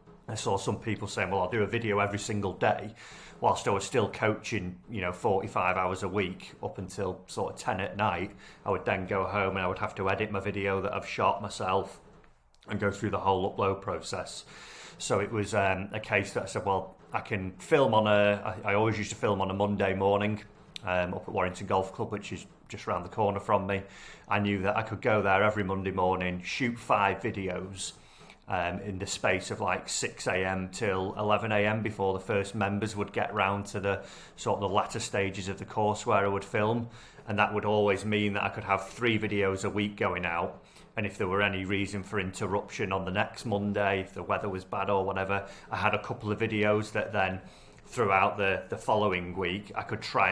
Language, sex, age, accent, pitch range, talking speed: English, male, 30-49, British, 95-105 Hz, 225 wpm